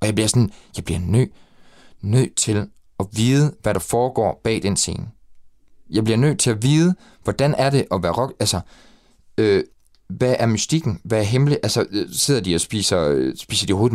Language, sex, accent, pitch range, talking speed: Danish, male, native, 95-135 Hz, 200 wpm